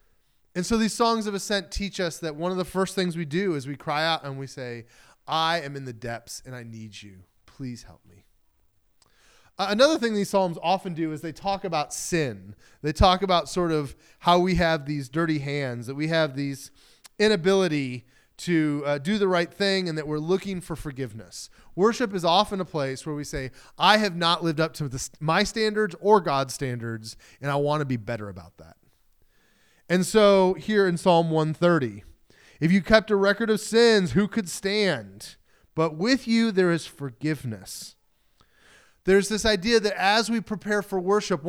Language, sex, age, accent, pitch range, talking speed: English, male, 30-49, American, 140-195 Hz, 195 wpm